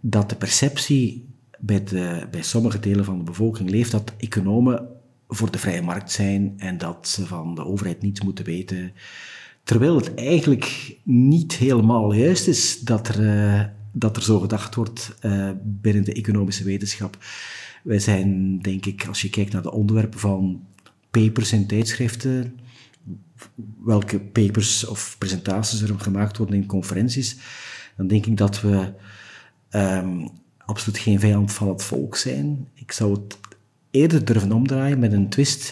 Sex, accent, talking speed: male, Dutch, 150 wpm